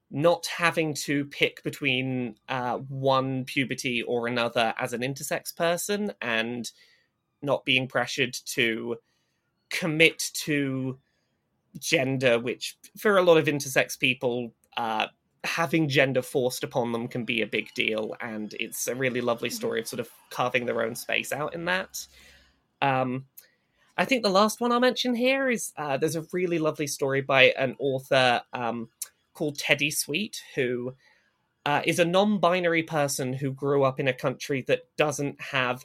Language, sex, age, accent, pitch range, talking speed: English, male, 20-39, British, 125-160 Hz, 155 wpm